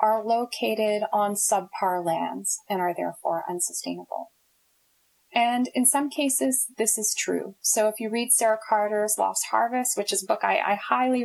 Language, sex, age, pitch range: English, female, 30-49, 205-240 Hz